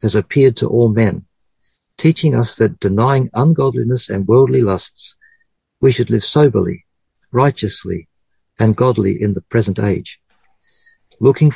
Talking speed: 130 wpm